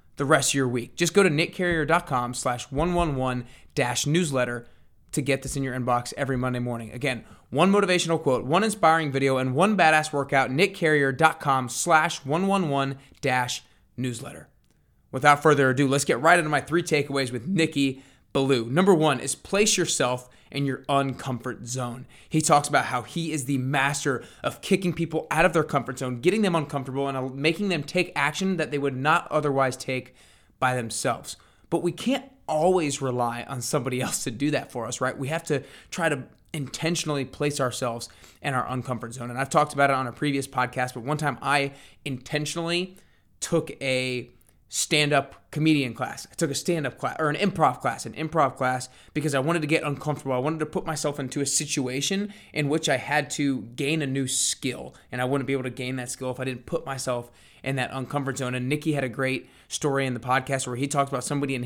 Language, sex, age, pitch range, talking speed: English, male, 20-39, 125-155 Hz, 200 wpm